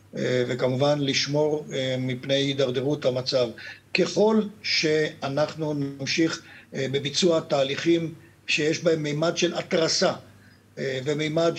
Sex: male